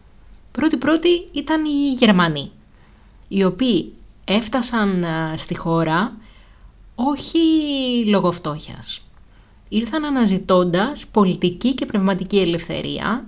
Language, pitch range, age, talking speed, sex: Greek, 165-235 Hz, 20-39, 80 wpm, female